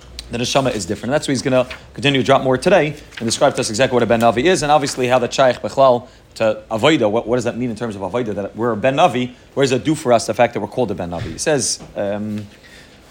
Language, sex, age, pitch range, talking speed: English, male, 30-49, 120-165 Hz, 280 wpm